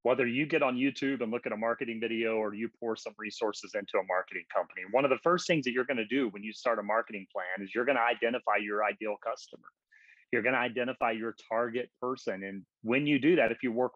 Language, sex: English, male